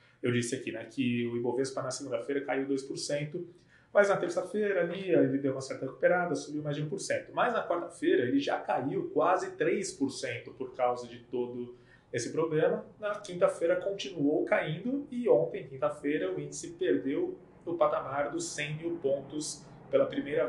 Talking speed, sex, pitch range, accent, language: 165 wpm, male, 140-190 Hz, Brazilian, Portuguese